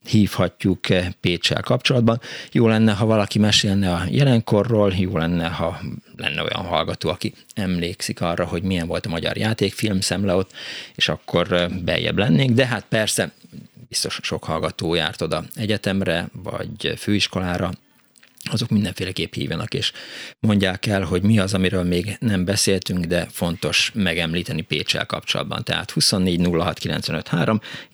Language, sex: Hungarian, male